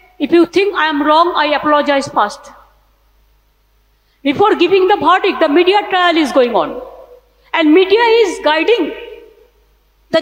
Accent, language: Indian, English